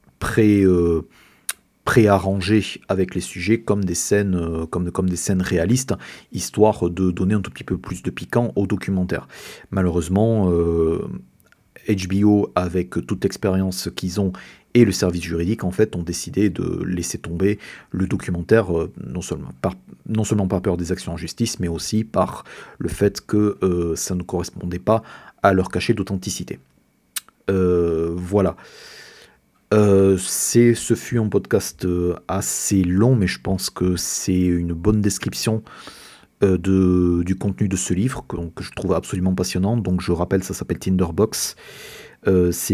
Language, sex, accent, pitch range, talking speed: French, male, French, 90-100 Hz, 145 wpm